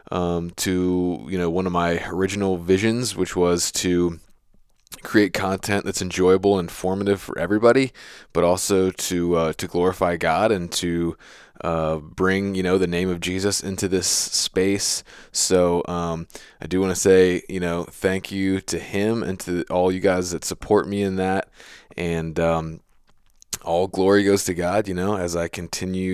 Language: English